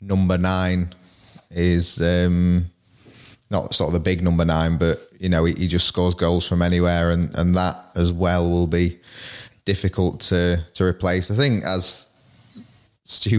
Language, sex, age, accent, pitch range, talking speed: English, male, 20-39, British, 90-105 Hz, 160 wpm